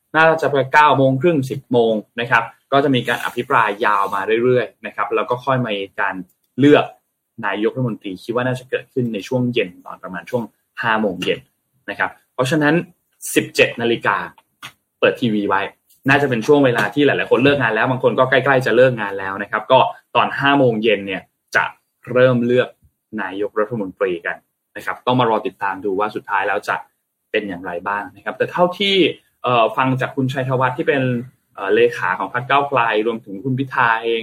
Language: Thai